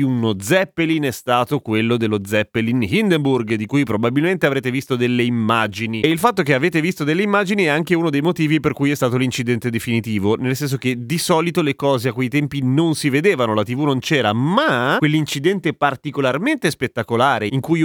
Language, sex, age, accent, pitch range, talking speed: Italian, male, 30-49, native, 115-155 Hz, 190 wpm